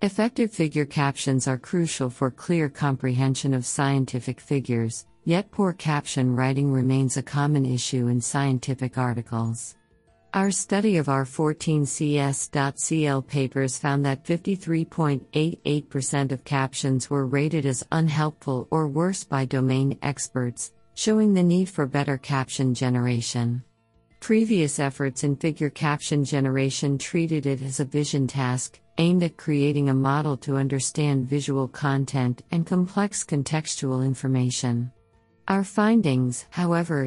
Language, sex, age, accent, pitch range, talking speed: English, female, 50-69, American, 130-155 Hz, 125 wpm